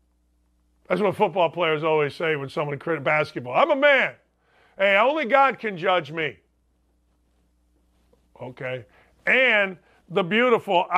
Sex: male